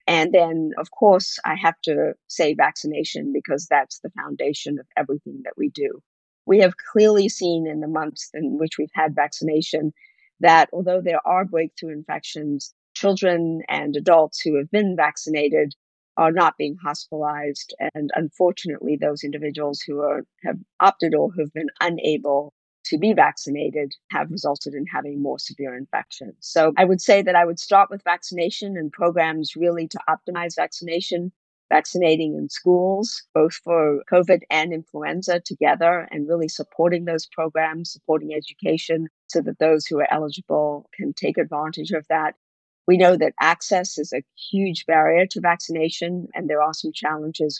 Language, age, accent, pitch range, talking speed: English, 50-69, American, 150-175 Hz, 160 wpm